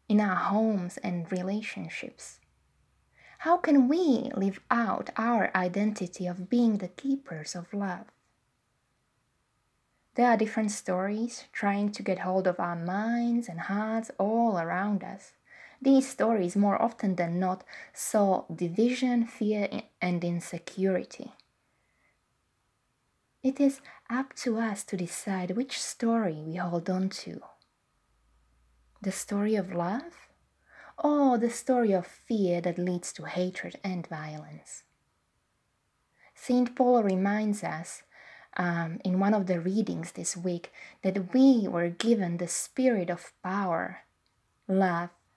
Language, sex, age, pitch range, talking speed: English, female, 20-39, 180-230 Hz, 125 wpm